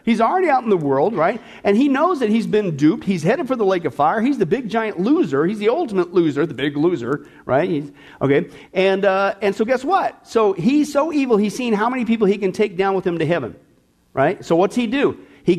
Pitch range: 175-230 Hz